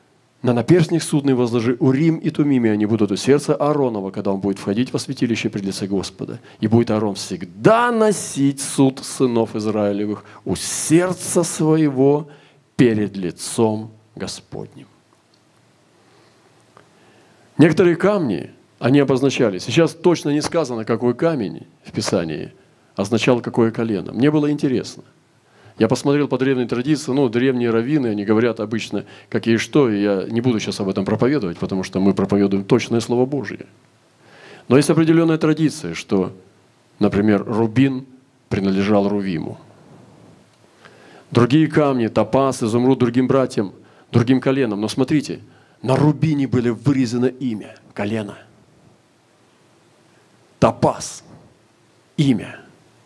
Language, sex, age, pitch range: Russian, male, 40-59, 110-145 Hz